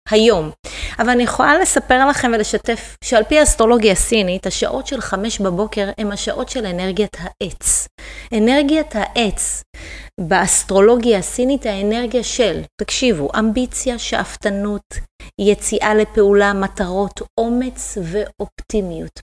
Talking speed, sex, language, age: 105 wpm, female, Hebrew, 30-49